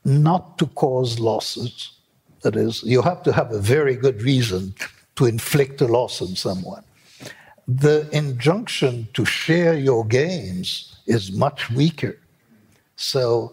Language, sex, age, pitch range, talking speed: English, male, 60-79, 110-155 Hz, 135 wpm